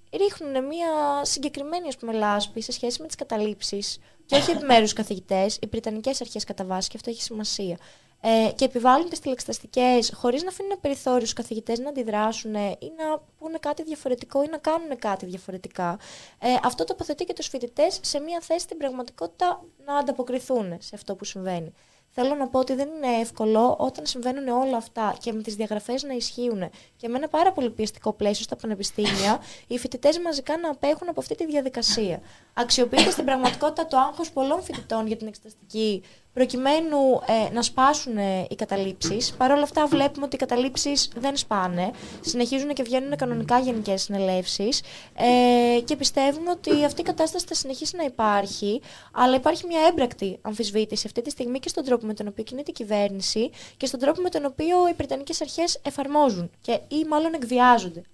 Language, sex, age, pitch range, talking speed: Greek, female, 20-39, 215-290 Hz, 170 wpm